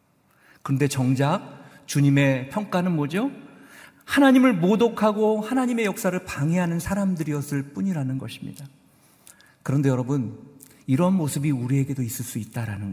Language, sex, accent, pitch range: Korean, male, native, 130-180 Hz